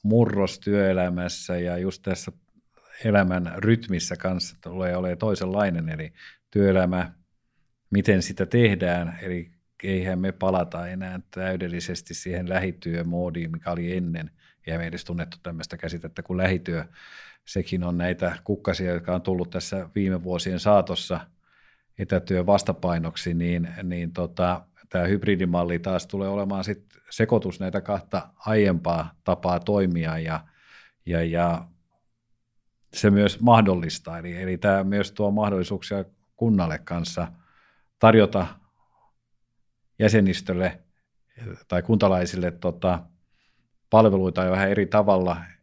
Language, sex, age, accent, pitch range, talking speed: Finnish, male, 50-69, native, 85-100 Hz, 115 wpm